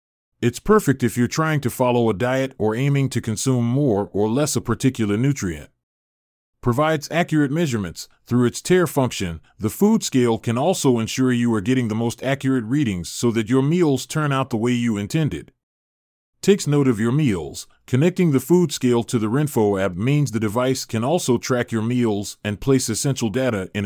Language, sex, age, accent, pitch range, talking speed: English, male, 30-49, American, 105-140 Hz, 190 wpm